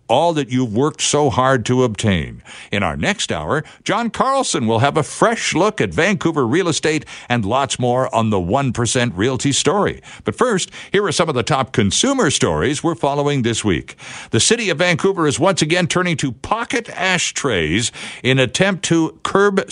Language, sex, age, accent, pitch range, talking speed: English, male, 60-79, American, 120-175 Hz, 185 wpm